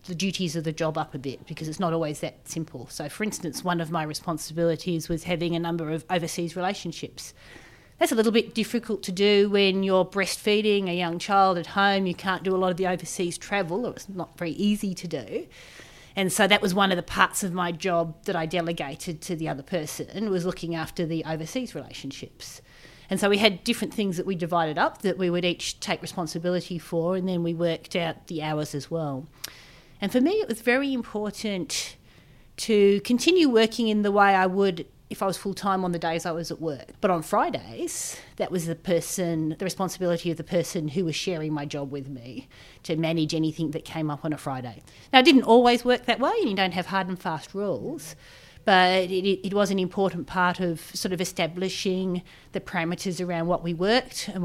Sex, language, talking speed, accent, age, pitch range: female, English, 215 wpm, Australian, 30-49, 160-195 Hz